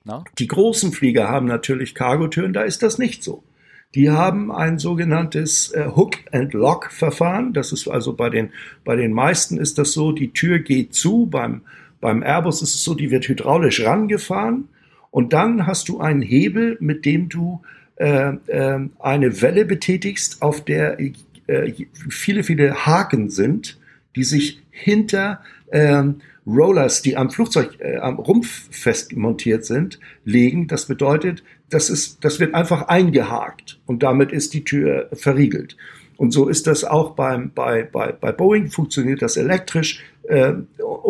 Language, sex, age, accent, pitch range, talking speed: German, male, 50-69, German, 135-180 Hz, 160 wpm